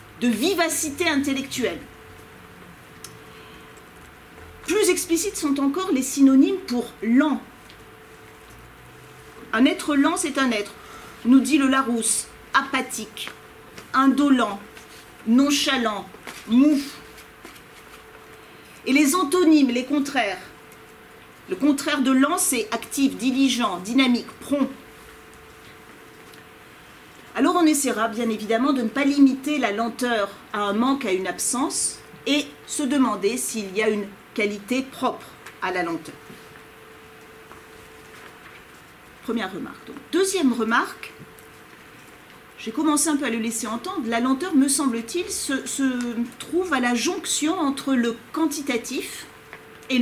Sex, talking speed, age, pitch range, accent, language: female, 115 wpm, 40-59, 230-295 Hz, French, French